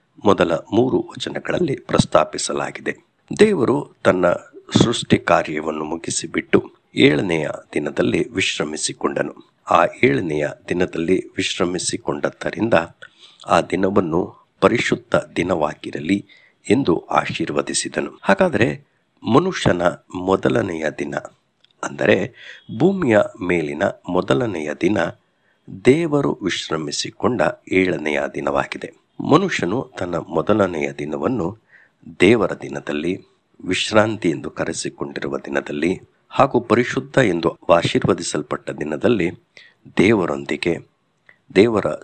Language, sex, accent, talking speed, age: English, male, Indian, 75 wpm, 60-79